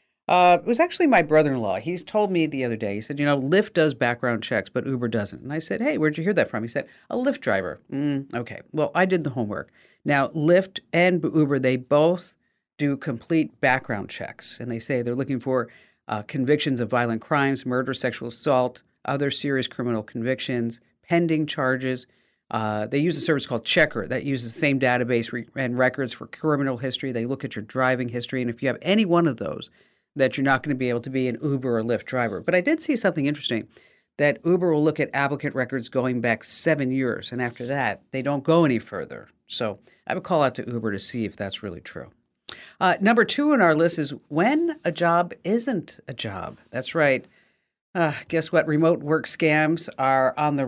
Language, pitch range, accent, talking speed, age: English, 125-160 Hz, American, 215 wpm, 50-69